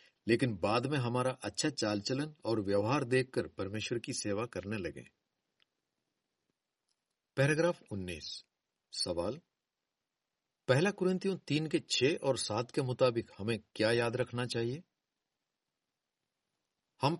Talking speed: 110 wpm